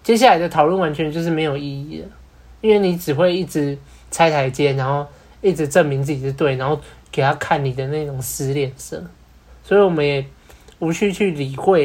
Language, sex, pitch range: Chinese, male, 140-170 Hz